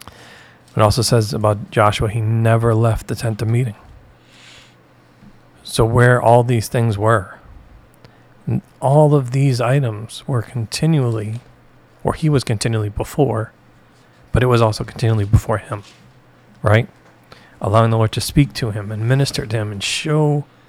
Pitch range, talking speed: 110-125 Hz, 145 wpm